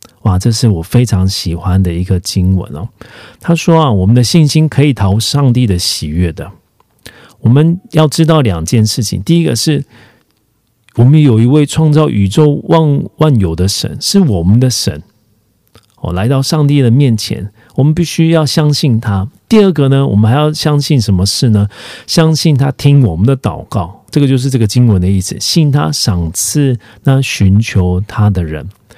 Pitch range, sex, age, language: 100-155 Hz, male, 50-69, Korean